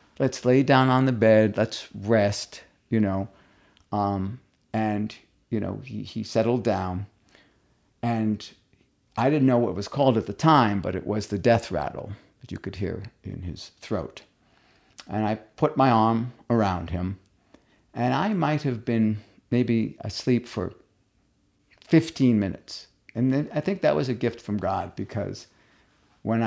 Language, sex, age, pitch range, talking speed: English, male, 50-69, 100-125 Hz, 160 wpm